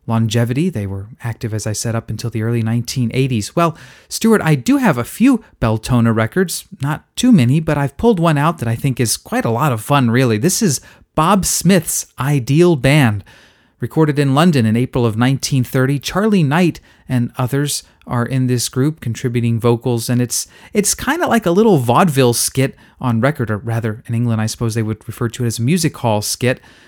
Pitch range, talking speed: 115-155 Hz, 200 wpm